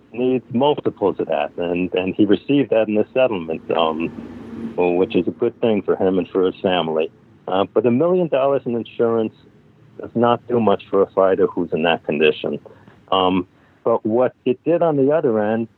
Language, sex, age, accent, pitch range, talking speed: English, male, 60-79, American, 95-120 Hz, 195 wpm